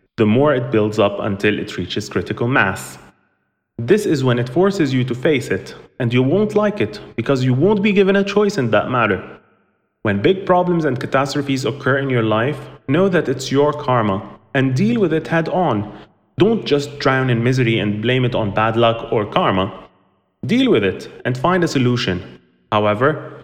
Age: 30-49